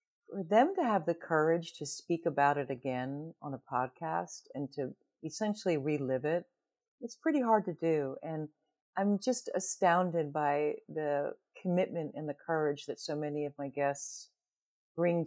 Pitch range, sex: 150-205 Hz, female